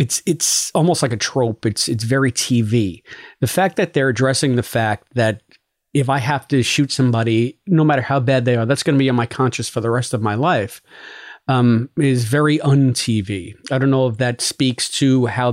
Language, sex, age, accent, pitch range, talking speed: English, male, 40-59, American, 120-140 Hz, 215 wpm